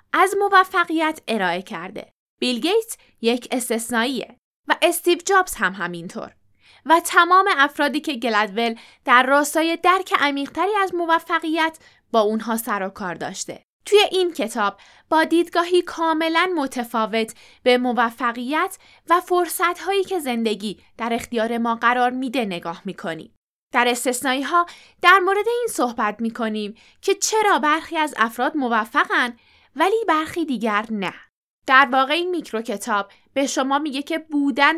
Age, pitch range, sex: 10-29, 235-330 Hz, female